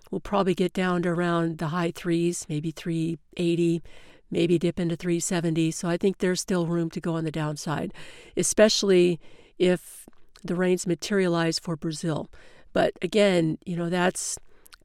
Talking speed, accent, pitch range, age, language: 160 wpm, American, 165-190 Hz, 50-69, English